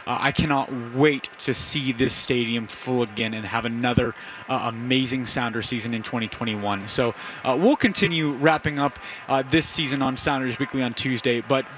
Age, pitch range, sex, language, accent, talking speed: 20-39, 125-150 Hz, male, English, American, 175 wpm